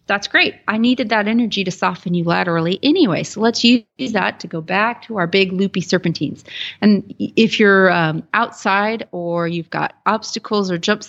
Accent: American